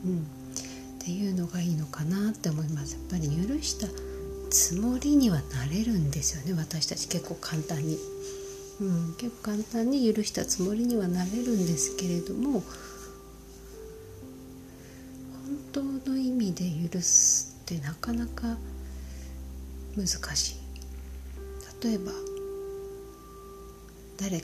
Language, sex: Japanese, female